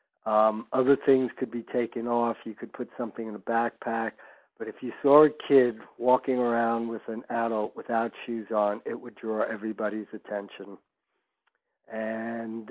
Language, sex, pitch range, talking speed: English, male, 110-125 Hz, 160 wpm